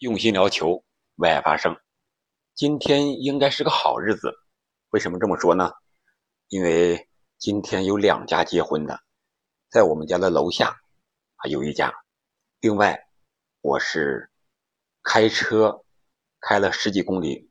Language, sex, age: Chinese, male, 50-69